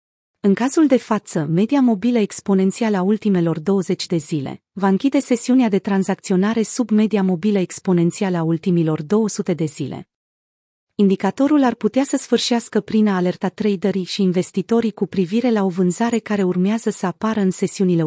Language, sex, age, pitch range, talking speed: Romanian, female, 30-49, 180-220 Hz, 160 wpm